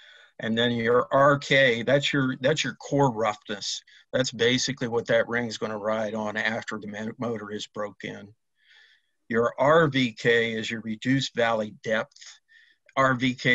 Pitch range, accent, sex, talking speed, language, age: 110-125 Hz, American, male, 145 wpm, English, 50-69